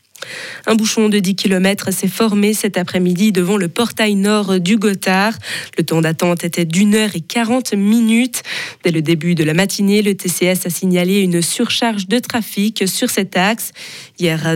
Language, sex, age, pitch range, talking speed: French, female, 20-39, 180-225 Hz, 175 wpm